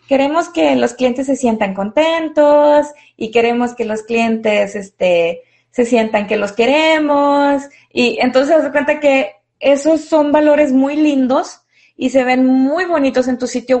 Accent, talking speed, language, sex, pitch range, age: Mexican, 160 wpm, Spanish, female, 245-295 Hz, 20-39